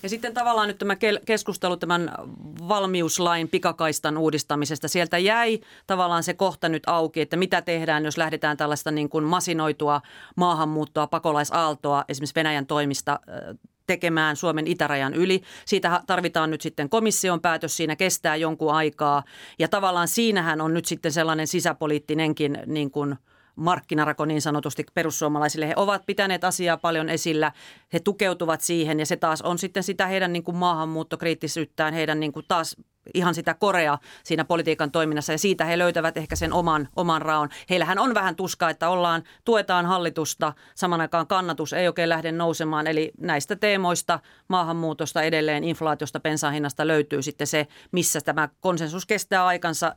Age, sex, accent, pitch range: 40-59, female, native, 155-180 Hz